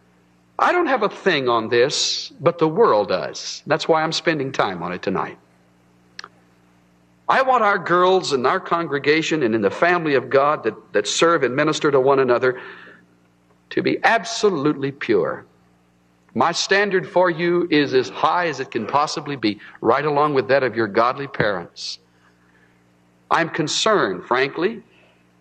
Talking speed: 160 wpm